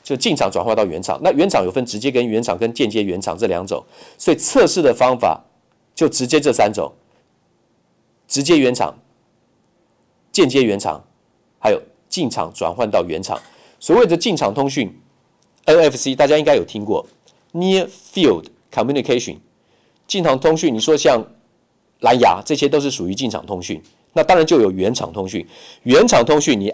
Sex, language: male, Chinese